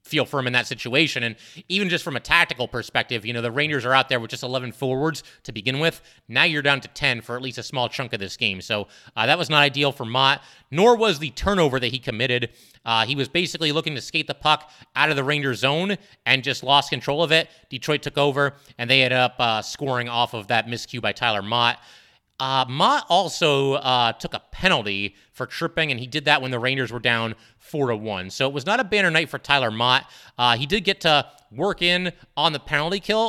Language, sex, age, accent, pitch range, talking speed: English, male, 30-49, American, 125-155 Hz, 240 wpm